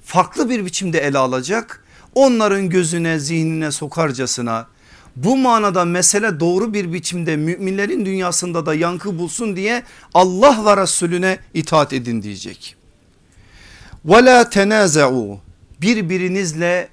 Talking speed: 105 wpm